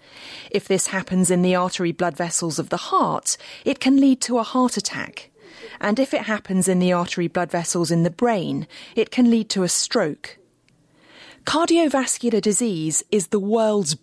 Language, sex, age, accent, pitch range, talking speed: English, female, 30-49, British, 175-245 Hz, 175 wpm